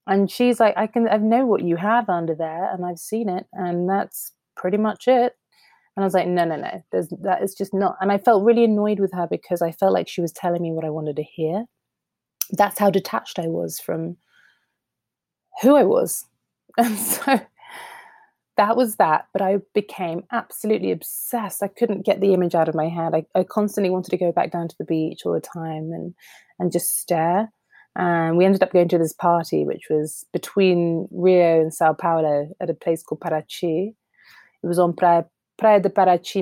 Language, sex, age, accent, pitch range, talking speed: English, female, 30-49, British, 165-200 Hz, 210 wpm